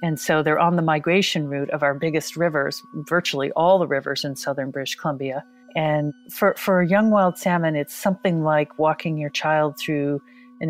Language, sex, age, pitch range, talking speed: English, female, 40-59, 150-185 Hz, 190 wpm